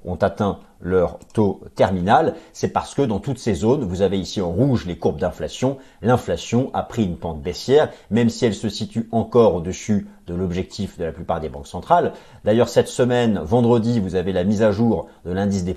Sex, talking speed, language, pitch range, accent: male, 205 wpm, French, 95-135 Hz, French